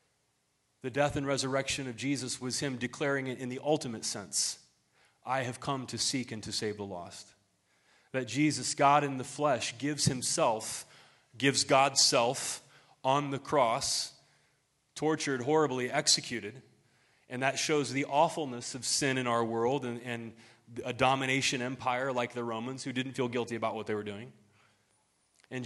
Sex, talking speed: male, 160 wpm